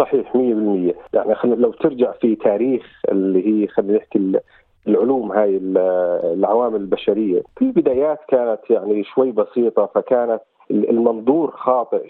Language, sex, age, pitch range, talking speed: Arabic, male, 40-59, 115-160 Hz, 125 wpm